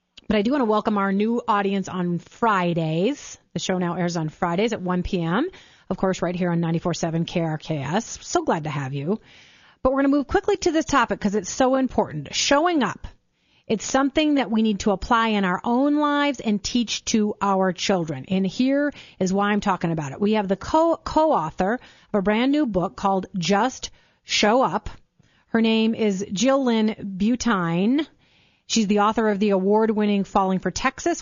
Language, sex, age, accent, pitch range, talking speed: English, female, 30-49, American, 185-230 Hz, 190 wpm